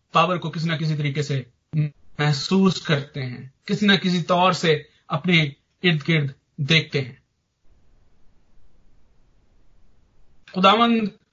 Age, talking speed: 40-59, 110 wpm